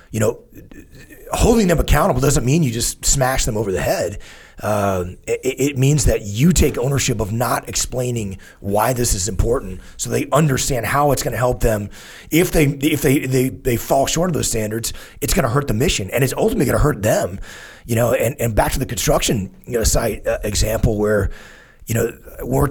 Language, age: English, 30-49